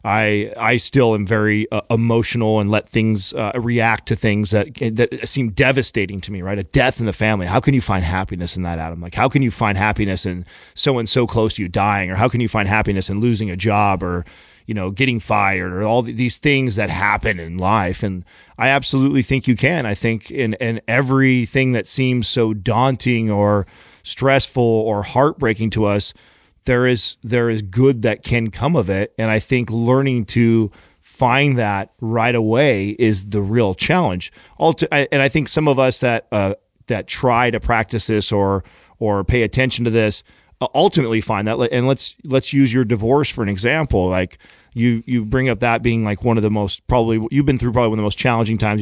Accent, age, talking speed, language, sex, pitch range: American, 30-49, 205 wpm, English, male, 100-125 Hz